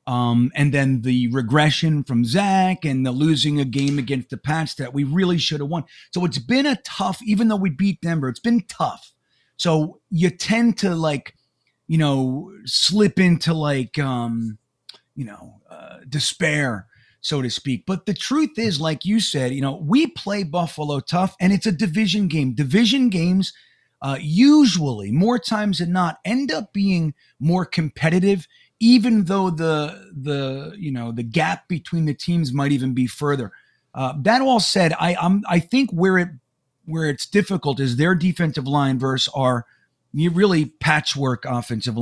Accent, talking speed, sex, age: American, 170 wpm, male, 30-49